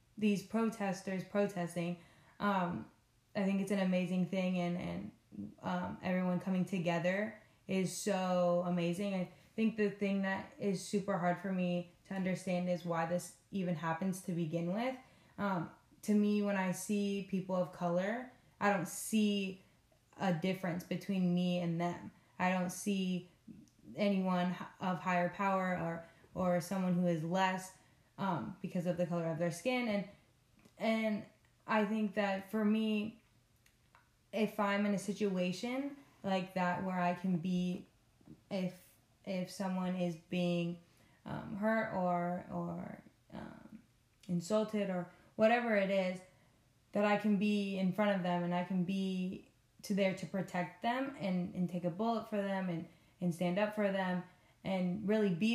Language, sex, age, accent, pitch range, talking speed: English, female, 20-39, American, 180-200 Hz, 155 wpm